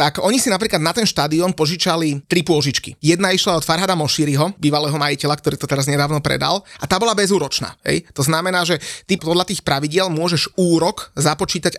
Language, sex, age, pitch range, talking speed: Slovak, male, 30-49, 150-185 Hz, 190 wpm